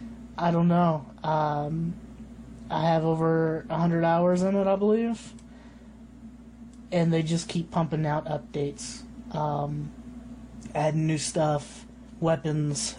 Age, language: 20-39, English